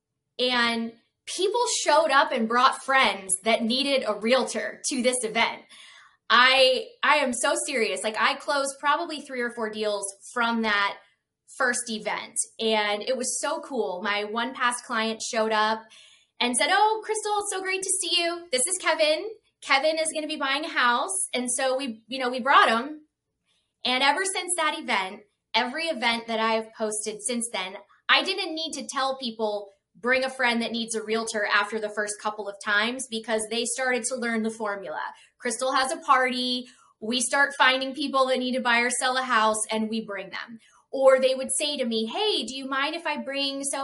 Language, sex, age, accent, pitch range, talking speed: English, female, 20-39, American, 220-275 Hz, 195 wpm